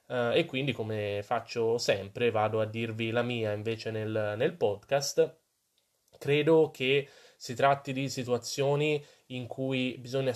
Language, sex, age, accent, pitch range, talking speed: Italian, male, 20-39, native, 115-130 Hz, 135 wpm